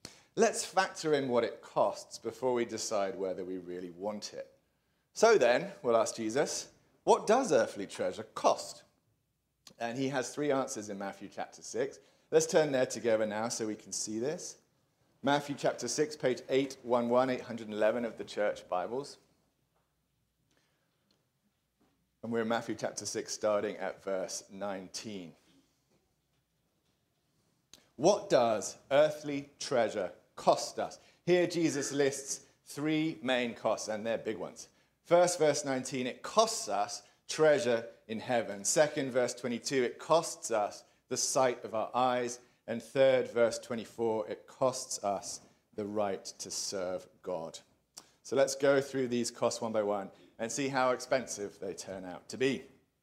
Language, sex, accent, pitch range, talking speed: English, male, British, 110-145 Hz, 145 wpm